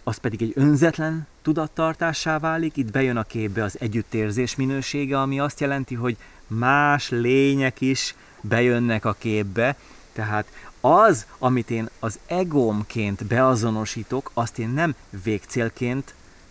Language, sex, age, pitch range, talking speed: Hungarian, male, 30-49, 115-160 Hz, 125 wpm